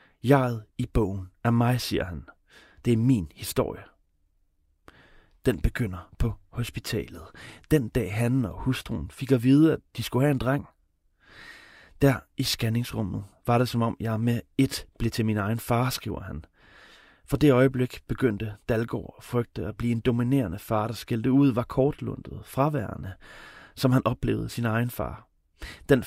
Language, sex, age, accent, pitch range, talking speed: Danish, male, 30-49, native, 105-130 Hz, 165 wpm